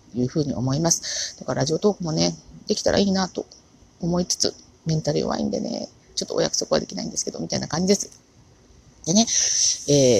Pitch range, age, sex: 120-190 Hz, 40-59, female